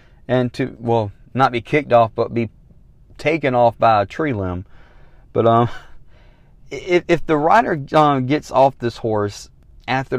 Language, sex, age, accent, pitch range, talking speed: English, male, 40-59, American, 115-155 Hz, 160 wpm